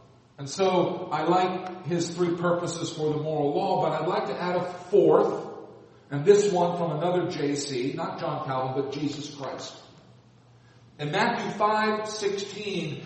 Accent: American